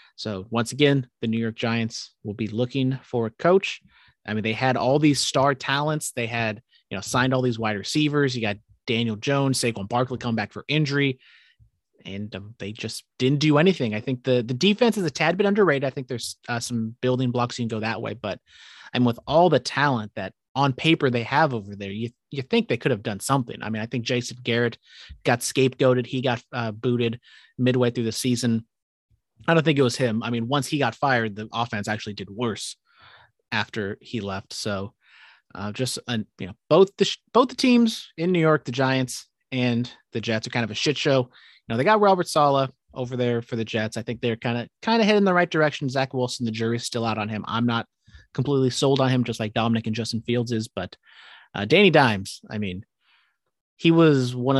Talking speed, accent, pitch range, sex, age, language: 225 wpm, American, 115-140 Hz, male, 30-49, English